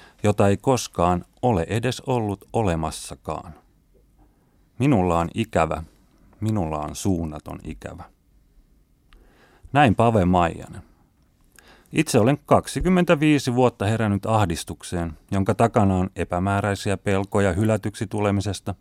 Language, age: Finnish, 30-49